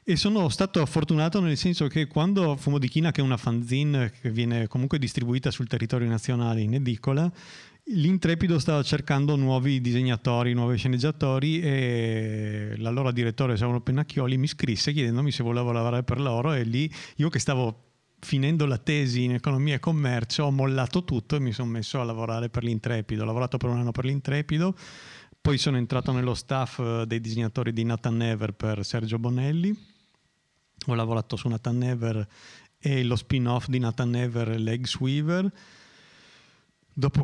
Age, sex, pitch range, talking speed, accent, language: 30-49, male, 120-150 Hz, 165 wpm, native, Italian